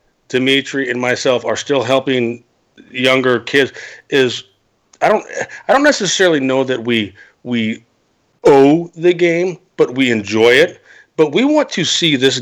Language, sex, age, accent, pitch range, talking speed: English, male, 40-59, American, 120-160 Hz, 150 wpm